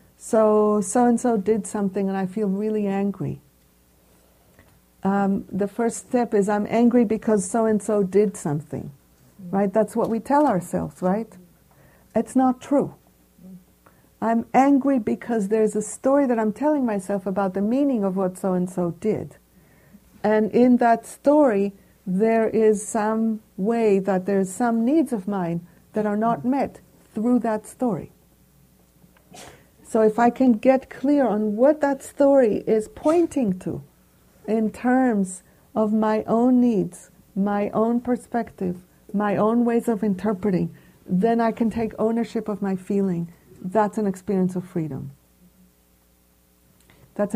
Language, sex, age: English, female, 60-79